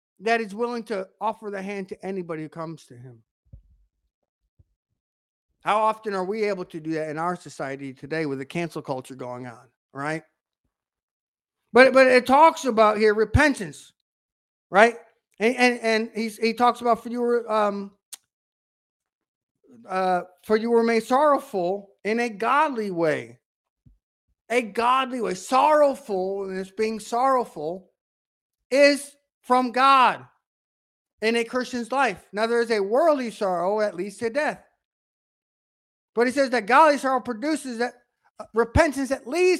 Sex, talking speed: male, 145 wpm